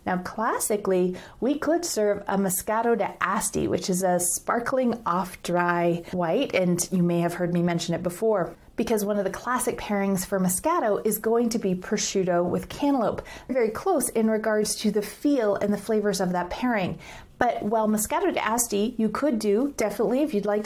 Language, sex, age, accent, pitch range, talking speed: English, female, 30-49, American, 185-235 Hz, 185 wpm